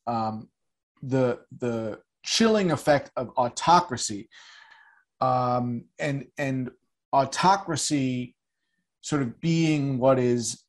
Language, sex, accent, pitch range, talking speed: English, male, American, 120-160 Hz, 90 wpm